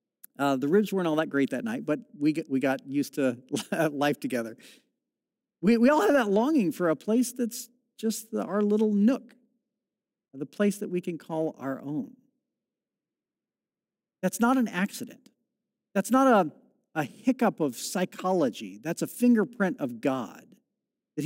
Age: 50-69